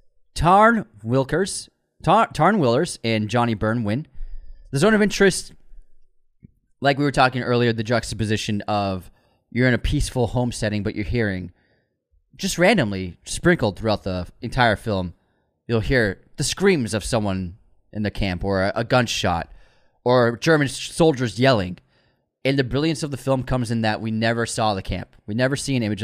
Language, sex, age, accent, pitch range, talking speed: English, male, 20-39, American, 95-125 Hz, 165 wpm